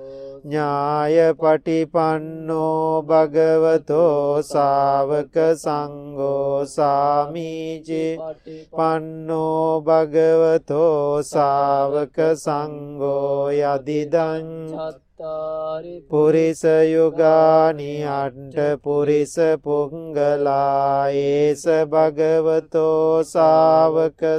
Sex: male